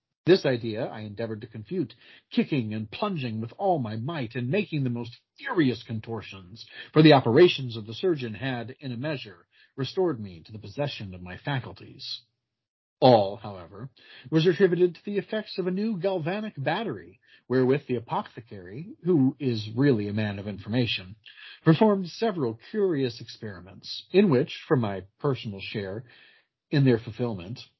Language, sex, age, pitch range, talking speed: English, male, 40-59, 110-155 Hz, 155 wpm